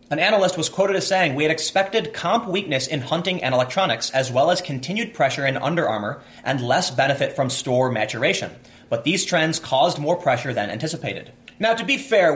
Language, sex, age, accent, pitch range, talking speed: English, male, 30-49, American, 125-170 Hz, 200 wpm